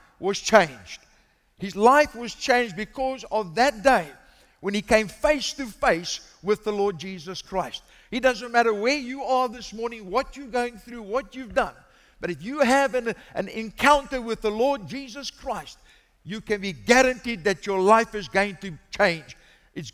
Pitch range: 195-260 Hz